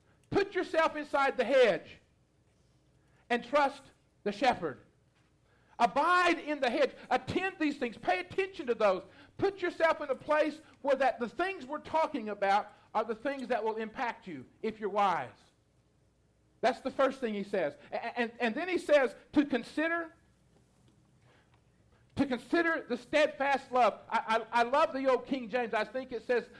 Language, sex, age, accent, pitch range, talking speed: English, male, 50-69, American, 205-275 Hz, 165 wpm